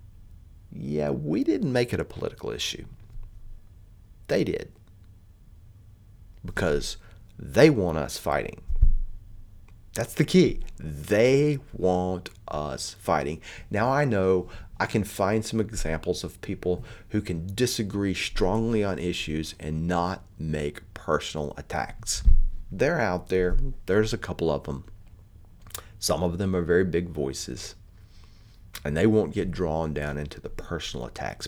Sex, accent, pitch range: male, American, 85-105 Hz